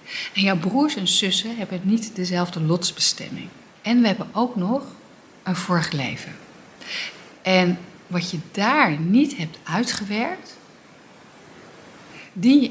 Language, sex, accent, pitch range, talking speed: Dutch, female, Dutch, 170-225 Hz, 125 wpm